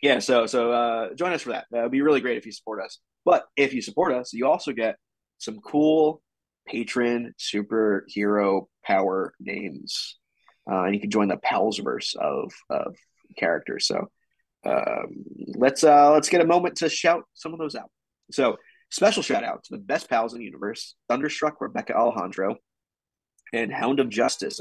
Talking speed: 175 wpm